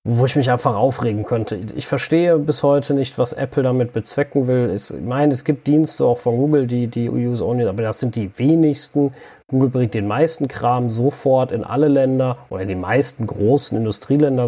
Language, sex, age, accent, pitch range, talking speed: German, male, 30-49, German, 100-130 Hz, 195 wpm